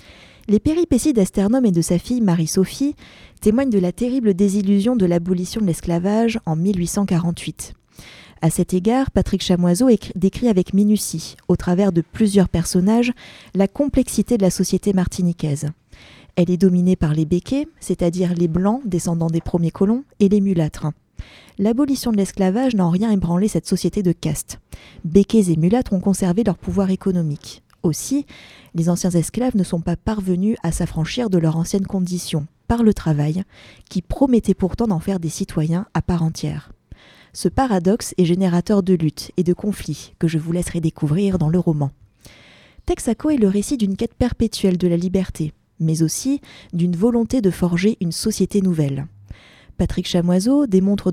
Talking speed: 165 wpm